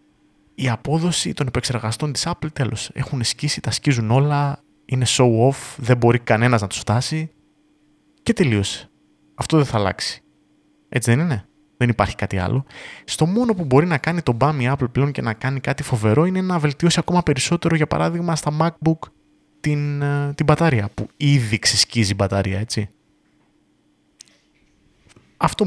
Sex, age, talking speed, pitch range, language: male, 20-39, 155 wpm, 110-150 Hz, Greek